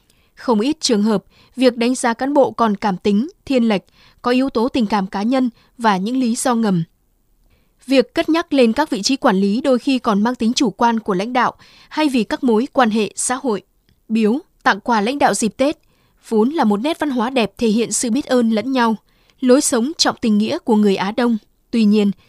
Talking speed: 230 wpm